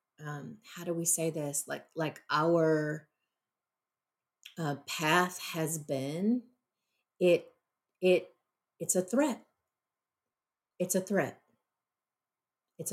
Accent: American